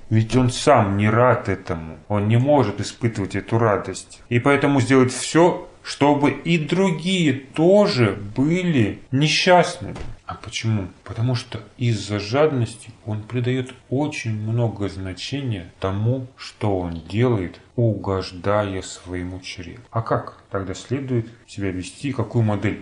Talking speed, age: 125 wpm, 30-49